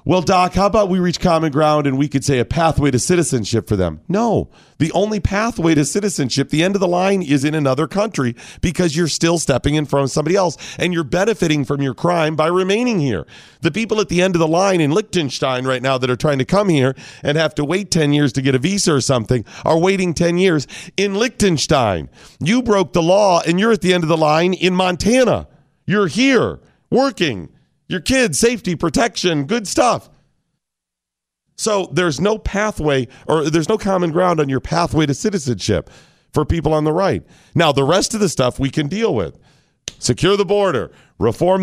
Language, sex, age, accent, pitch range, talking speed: English, male, 40-59, American, 145-195 Hz, 205 wpm